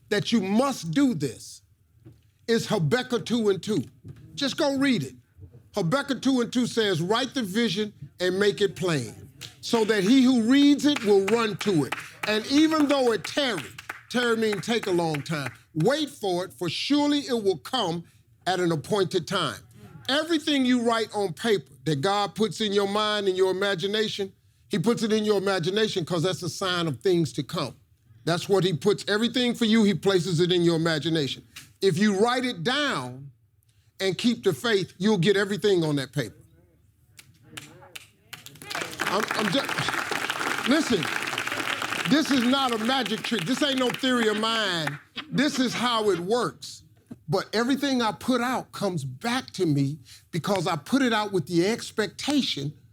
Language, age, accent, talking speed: English, 50-69, American, 170 wpm